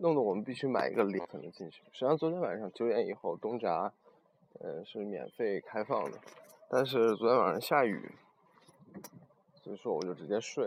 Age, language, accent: 20-39, Chinese, native